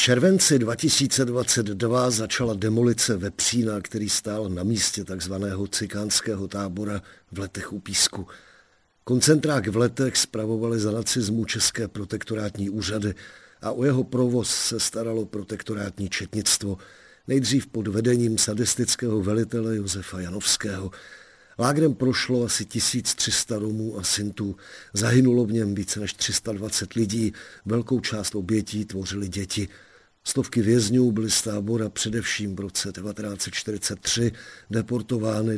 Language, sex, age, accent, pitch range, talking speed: Czech, male, 50-69, native, 100-120 Hz, 120 wpm